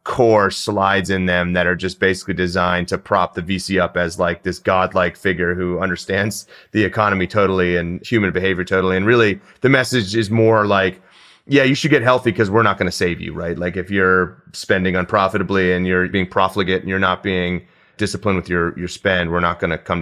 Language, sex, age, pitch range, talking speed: English, male, 30-49, 95-120 Hz, 215 wpm